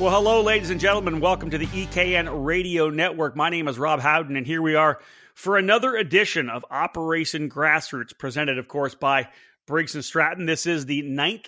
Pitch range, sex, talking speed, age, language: 145-180 Hz, male, 190 wpm, 30-49, English